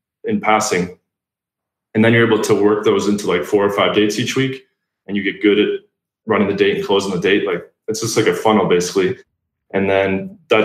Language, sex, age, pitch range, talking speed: English, male, 20-39, 95-110 Hz, 220 wpm